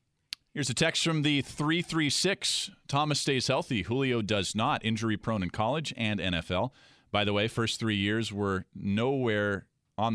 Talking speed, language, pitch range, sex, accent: 160 wpm, English, 110-180 Hz, male, American